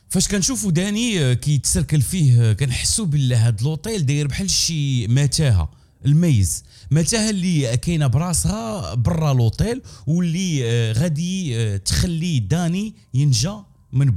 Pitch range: 110-155 Hz